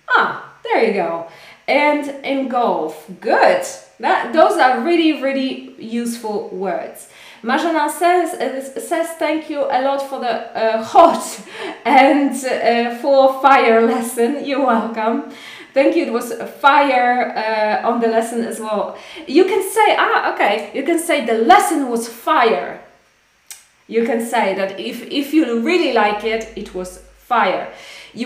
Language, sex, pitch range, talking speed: Polish, female, 225-285 Hz, 145 wpm